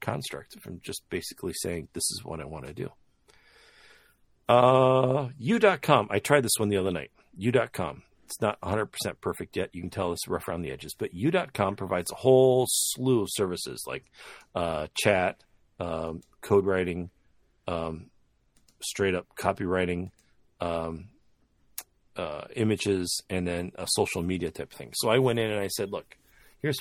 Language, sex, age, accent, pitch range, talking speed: English, male, 40-59, American, 90-115 Hz, 160 wpm